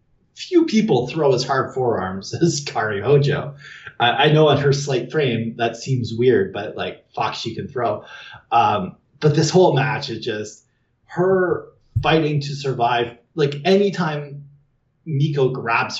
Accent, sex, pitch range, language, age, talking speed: American, male, 110-145 Hz, English, 30-49, 150 wpm